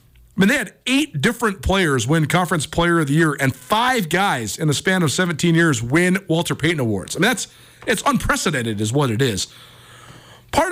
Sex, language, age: male, English, 40-59